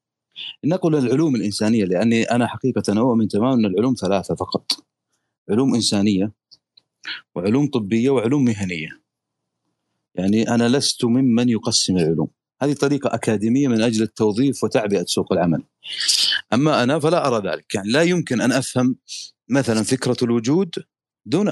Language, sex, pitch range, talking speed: Arabic, male, 105-135 Hz, 135 wpm